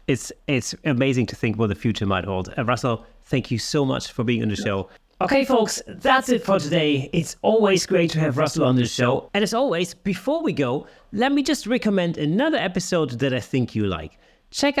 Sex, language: male, English